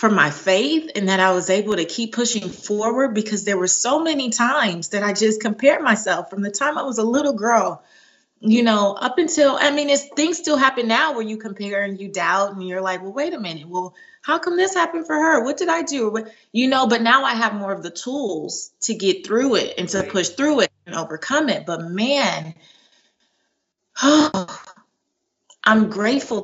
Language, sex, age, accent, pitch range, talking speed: English, female, 20-39, American, 185-235 Hz, 210 wpm